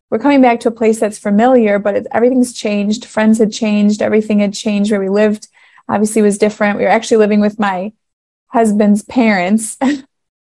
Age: 20-39